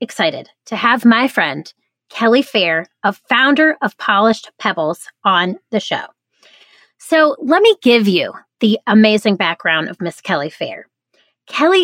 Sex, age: female, 30-49